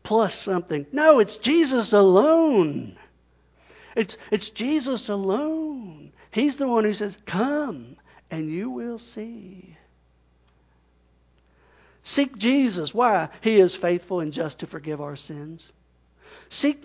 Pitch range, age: 160-250 Hz, 60-79